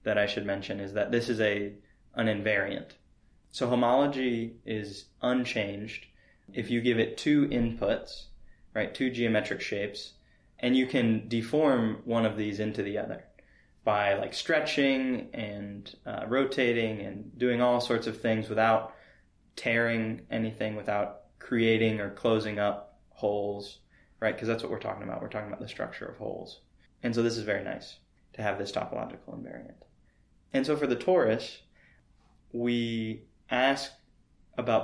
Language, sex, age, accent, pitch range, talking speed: English, male, 20-39, American, 105-120 Hz, 155 wpm